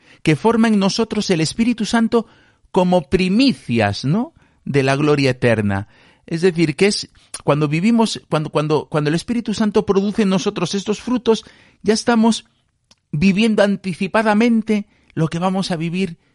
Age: 50-69